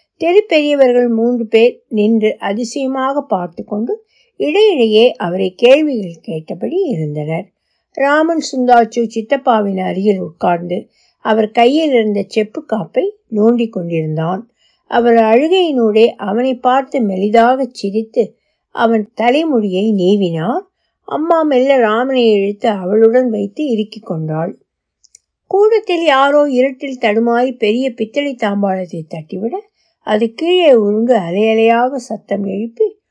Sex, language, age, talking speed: female, Tamil, 60-79, 100 wpm